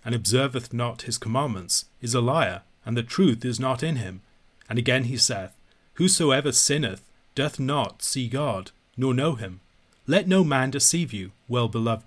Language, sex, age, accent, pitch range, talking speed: English, male, 40-59, British, 110-135 Hz, 170 wpm